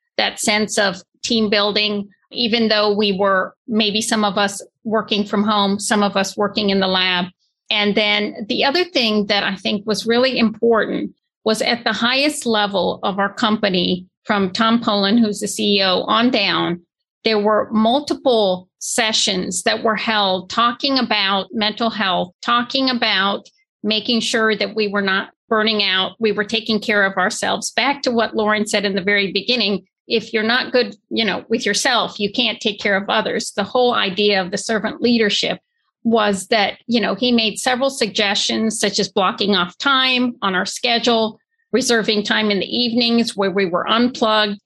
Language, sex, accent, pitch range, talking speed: English, female, American, 200-235 Hz, 175 wpm